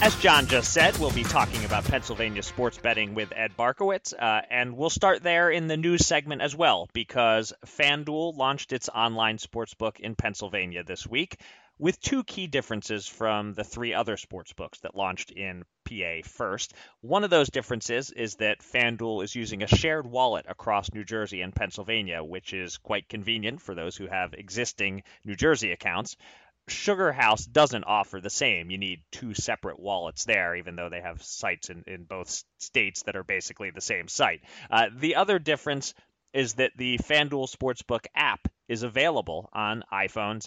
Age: 30-49